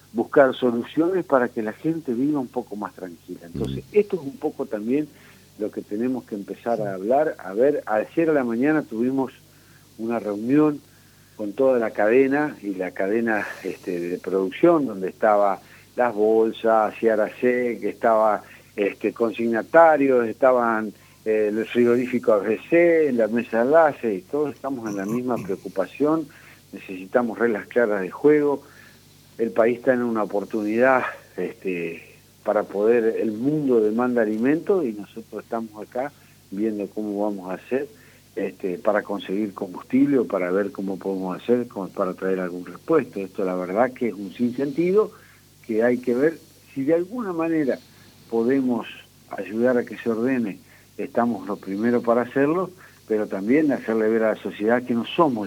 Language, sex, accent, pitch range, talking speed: Spanish, male, Argentinian, 105-130 Hz, 155 wpm